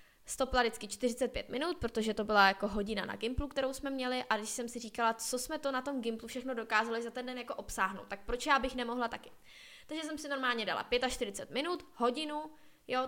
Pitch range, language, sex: 220-260 Hz, Czech, female